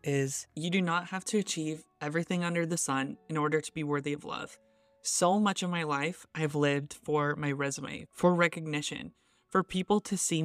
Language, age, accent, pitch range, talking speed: English, 20-39, American, 150-175 Hz, 195 wpm